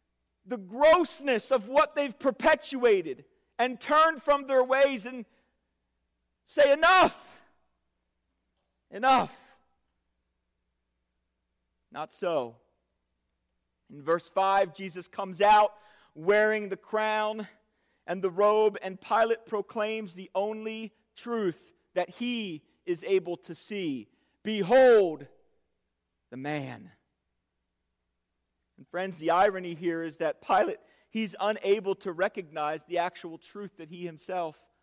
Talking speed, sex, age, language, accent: 105 wpm, male, 40-59, English, American